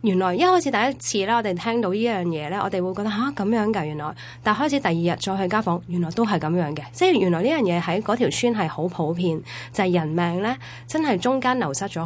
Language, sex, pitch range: Chinese, female, 170-230 Hz